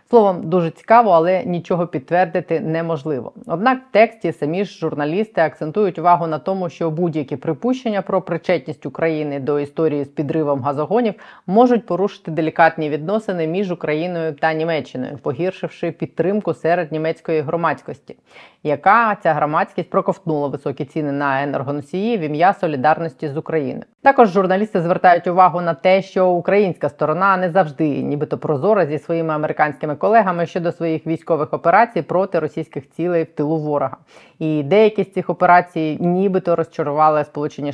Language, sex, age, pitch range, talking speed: Ukrainian, female, 20-39, 155-190 Hz, 140 wpm